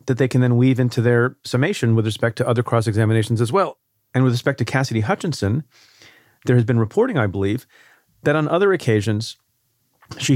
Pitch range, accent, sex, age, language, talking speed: 110-130 Hz, American, male, 40-59, English, 185 wpm